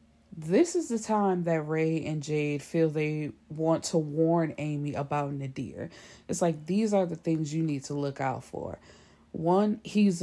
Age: 20-39